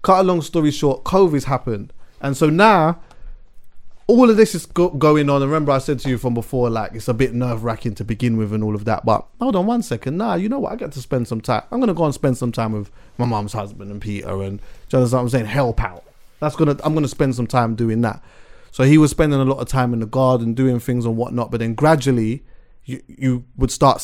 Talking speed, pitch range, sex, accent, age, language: 255 wpm, 120-155 Hz, male, British, 30-49, English